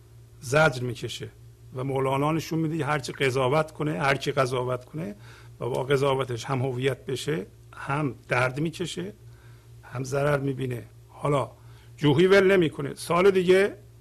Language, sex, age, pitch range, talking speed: Persian, male, 50-69, 115-155 Hz, 130 wpm